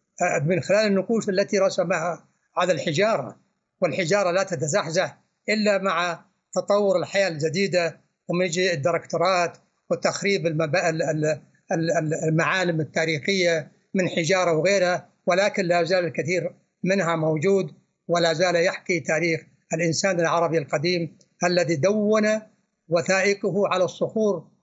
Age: 60-79